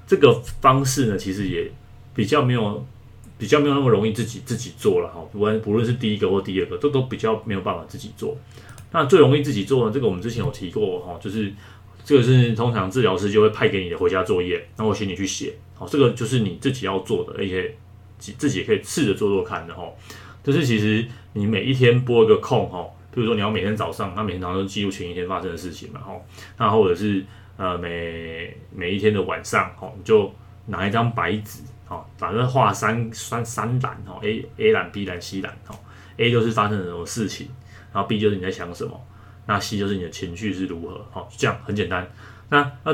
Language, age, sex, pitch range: Chinese, 30-49, male, 95-115 Hz